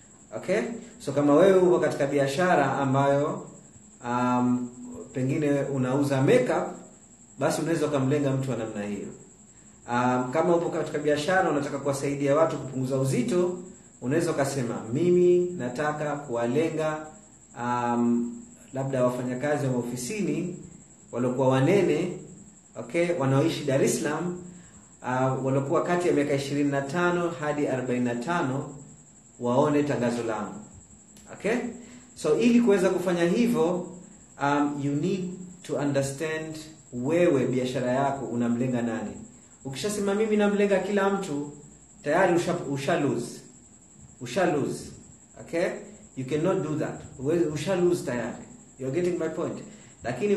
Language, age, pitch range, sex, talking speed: Swahili, 30-49, 130-175 Hz, male, 115 wpm